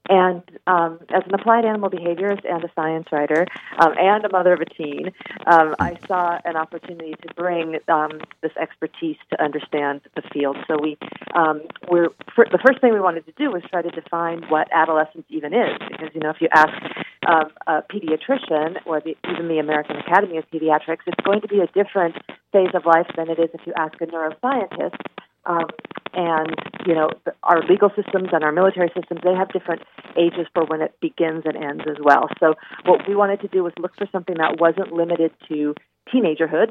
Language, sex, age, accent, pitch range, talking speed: English, female, 40-59, American, 160-185 Hz, 205 wpm